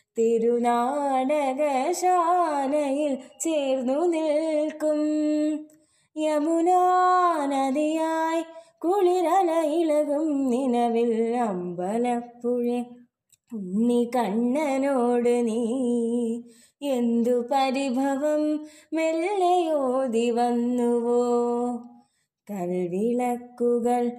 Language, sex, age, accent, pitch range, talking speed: Malayalam, female, 20-39, native, 235-295 Hz, 35 wpm